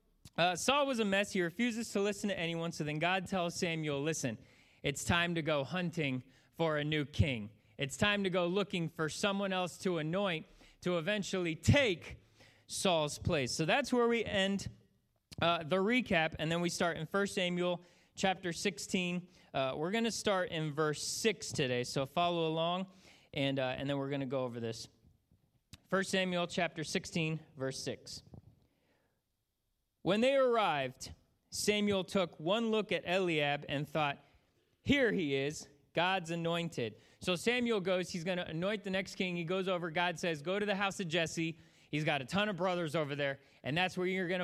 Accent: American